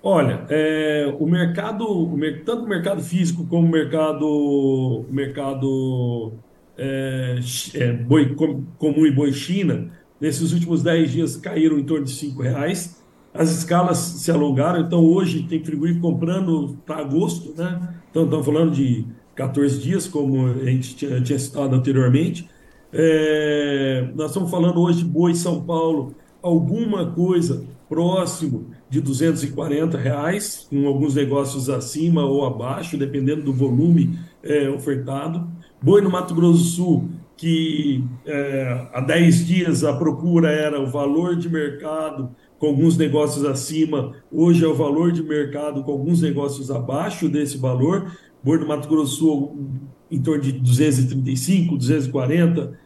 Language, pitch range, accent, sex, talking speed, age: Portuguese, 140-165 Hz, Brazilian, male, 145 wpm, 50-69